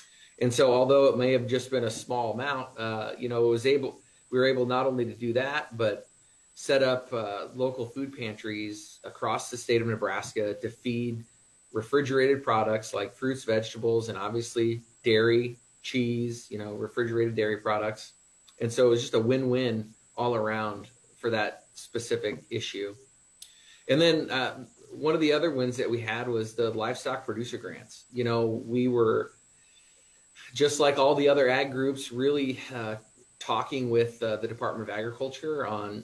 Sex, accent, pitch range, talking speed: male, American, 110-125 Hz, 170 wpm